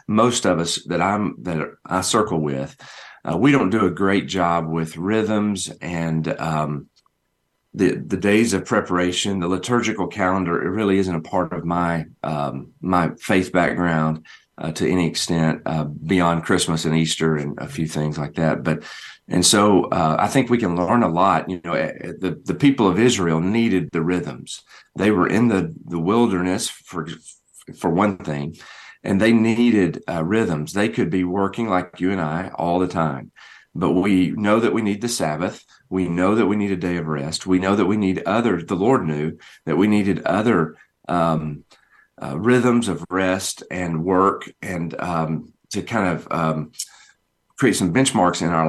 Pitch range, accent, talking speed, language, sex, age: 80-100 Hz, American, 185 wpm, English, male, 40-59